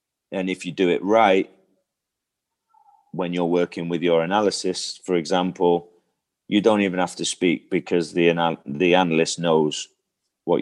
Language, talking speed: English, 155 wpm